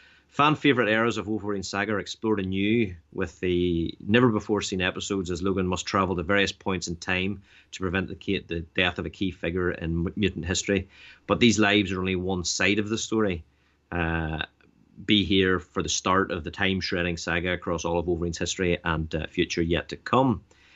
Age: 30-49